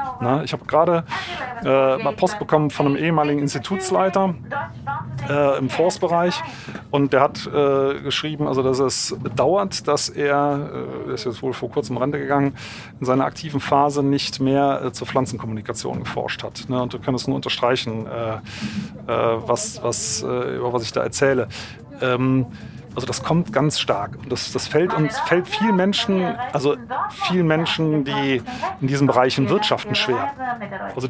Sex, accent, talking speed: male, German, 170 wpm